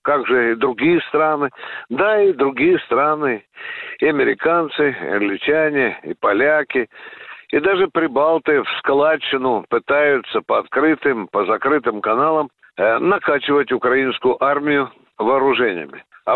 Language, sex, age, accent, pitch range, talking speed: Russian, male, 60-79, native, 130-170 Hz, 115 wpm